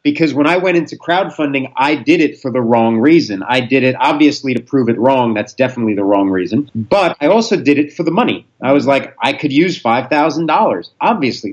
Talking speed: 220 wpm